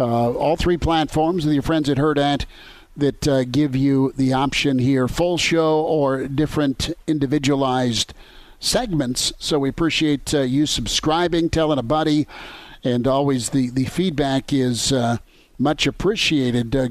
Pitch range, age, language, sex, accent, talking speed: 130-155 Hz, 50-69, English, male, American, 150 wpm